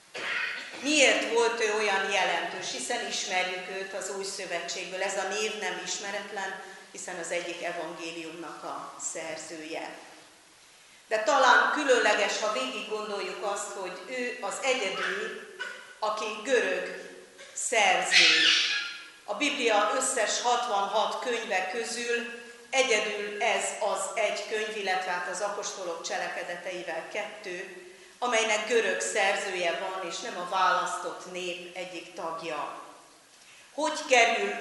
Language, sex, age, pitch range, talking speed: Hungarian, female, 40-59, 185-235 Hz, 115 wpm